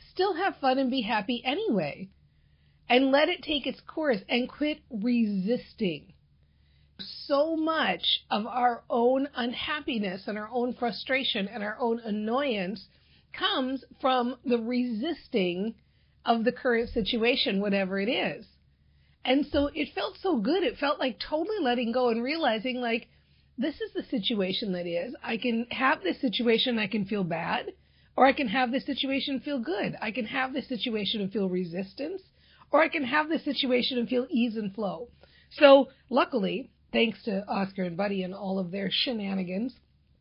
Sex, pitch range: female, 205-275 Hz